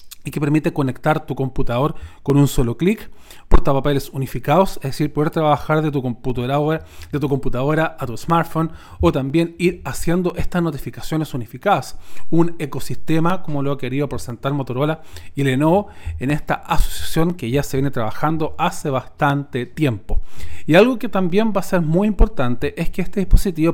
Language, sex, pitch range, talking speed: Spanish, male, 135-170 Hz, 165 wpm